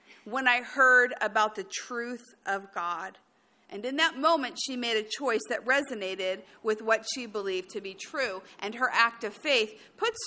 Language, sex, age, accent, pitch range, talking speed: English, female, 40-59, American, 215-295 Hz, 180 wpm